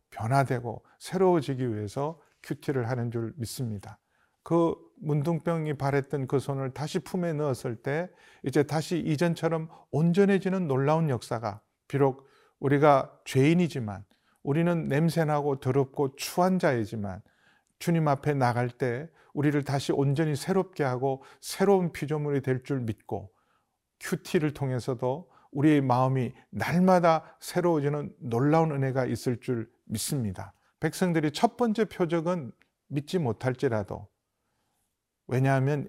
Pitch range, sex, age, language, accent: 120-160 Hz, male, 40-59, Korean, native